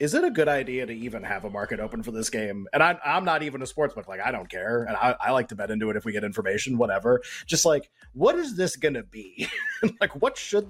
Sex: male